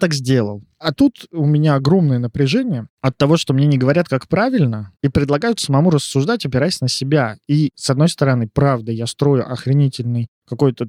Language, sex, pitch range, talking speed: Russian, male, 120-145 Hz, 175 wpm